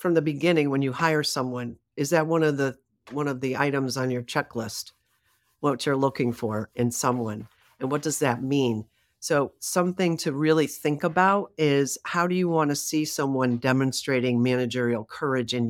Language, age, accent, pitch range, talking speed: English, 50-69, American, 130-160 Hz, 185 wpm